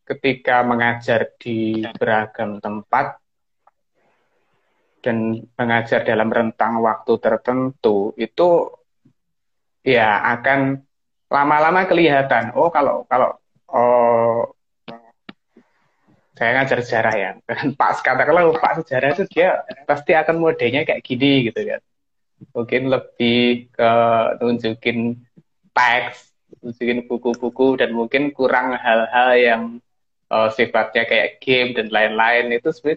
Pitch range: 115-140 Hz